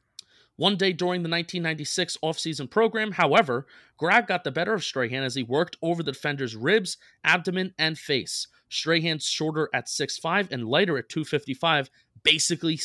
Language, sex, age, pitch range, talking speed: English, male, 30-49, 140-190 Hz, 155 wpm